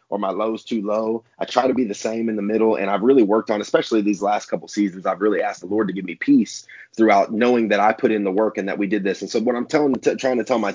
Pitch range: 100-115 Hz